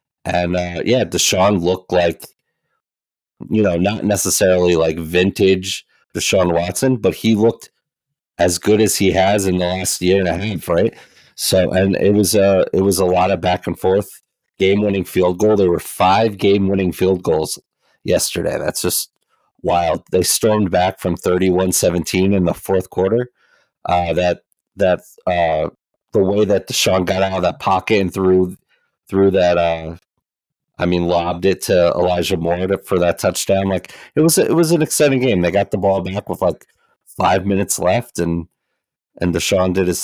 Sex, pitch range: male, 90-100 Hz